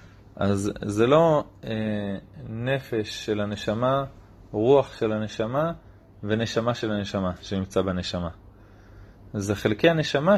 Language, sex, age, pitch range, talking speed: Hebrew, male, 30-49, 100-140 Hz, 105 wpm